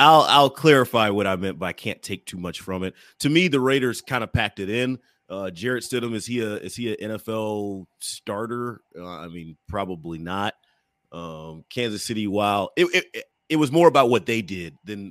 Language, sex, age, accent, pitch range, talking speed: English, male, 30-49, American, 95-120 Hz, 200 wpm